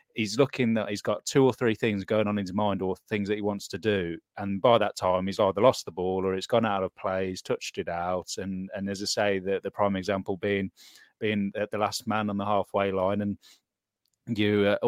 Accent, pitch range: British, 95-105 Hz